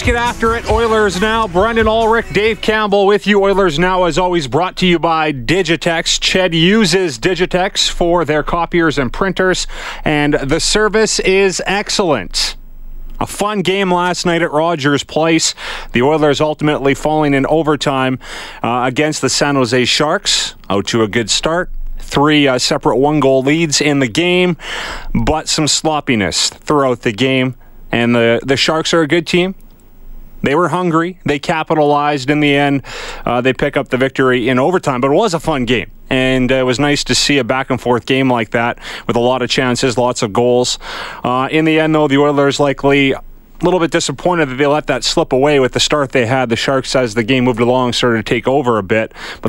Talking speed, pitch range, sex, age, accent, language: 195 wpm, 130-170 Hz, male, 30-49, American, English